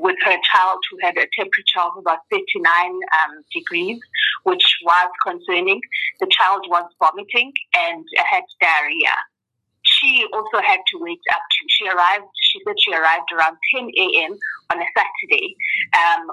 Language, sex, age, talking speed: English, female, 30-49, 155 wpm